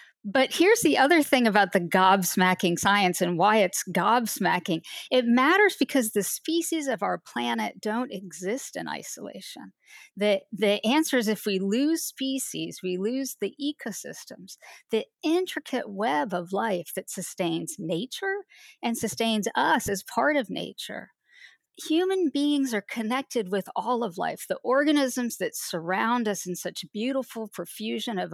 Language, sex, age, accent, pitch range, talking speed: English, female, 50-69, American, 195-260 Hz, 150 wpm